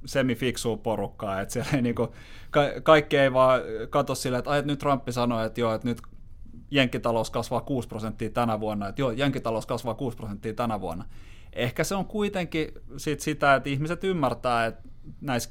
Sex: male